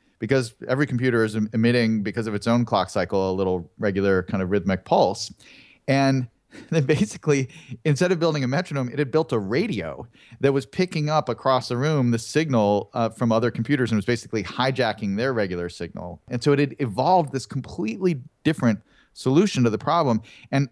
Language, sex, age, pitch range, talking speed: English, male, 40-59, 105-140 Hz, 185 wpm